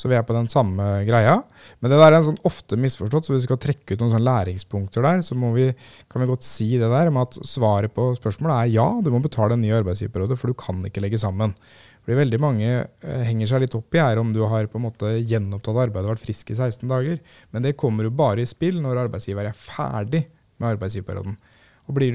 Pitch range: 105-130 Hz